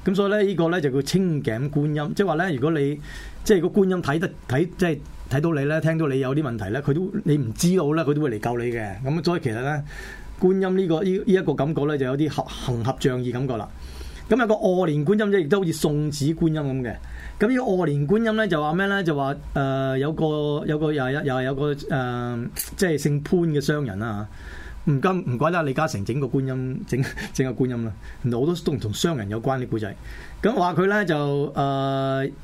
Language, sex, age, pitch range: Chinese, male, 20-39, 125-170 Hz